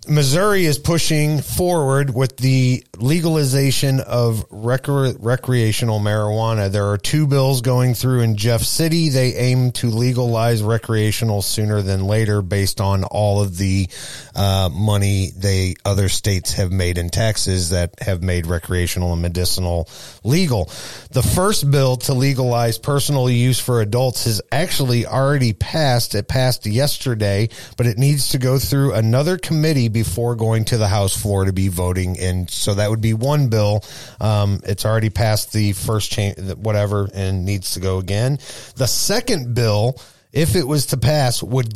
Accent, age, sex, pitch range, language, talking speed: American, 30-49, male, 100-135 Hz, English, 160 wpm